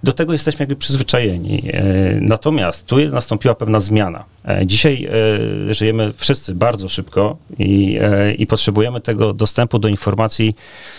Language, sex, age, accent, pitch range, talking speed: Polish, male, 40-59, native, 105-125 Hz, 125 wpm